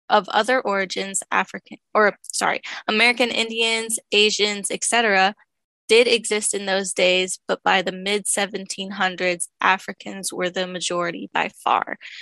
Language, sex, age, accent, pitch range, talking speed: English, female, 10-29, American, 190-225 Hz, 125 wpm